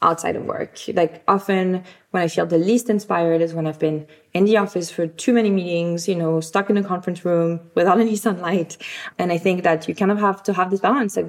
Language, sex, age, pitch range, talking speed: English, female, 20-39, 165-195 Hz, 240 wpm